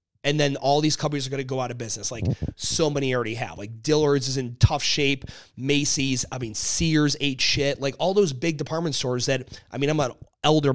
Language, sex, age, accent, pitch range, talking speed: English, male, 30-49, American, 115-150 Hz, 230 wpm